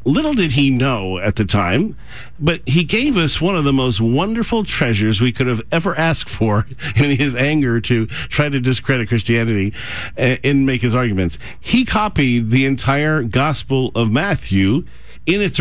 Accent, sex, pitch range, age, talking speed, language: American, male, 110-135 Hz, 50-69, 170 wpm, English